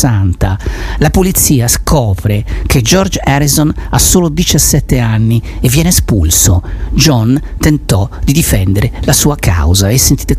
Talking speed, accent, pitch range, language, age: 125 wpm, native, 95-140 Hz, Italian, 40-59